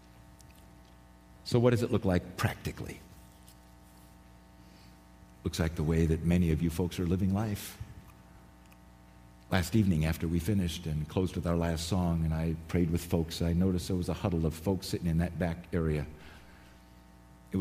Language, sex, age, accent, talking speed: English, male, 50-69, American, 165 wpm